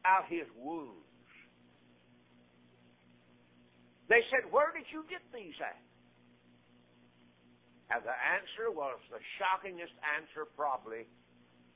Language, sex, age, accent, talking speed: English, male, 60-79, American, 95 wpm